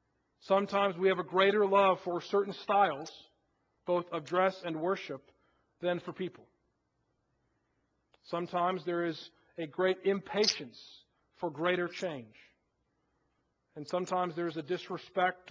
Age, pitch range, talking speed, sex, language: 40-59, 175-225 Hz, 125 wpm, male, English